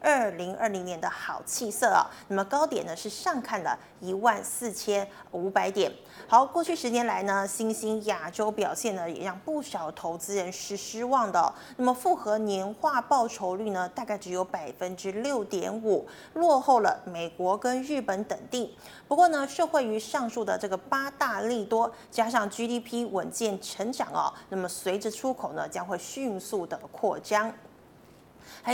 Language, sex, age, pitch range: Chinese, female, 30-49, 190-235 Hz